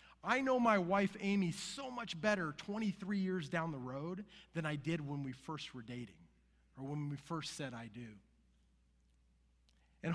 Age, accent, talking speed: 30-49, American, 170 wpm